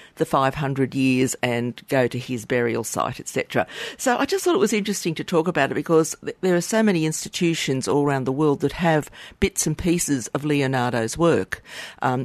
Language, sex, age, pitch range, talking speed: English, female, 50-69, 125-155 Hz, 205 wpm